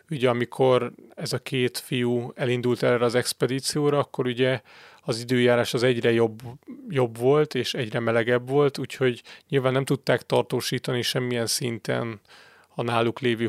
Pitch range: 120-140 Hz